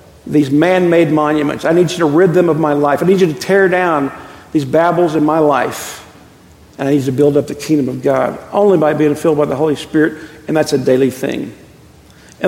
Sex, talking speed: male, 230 wpm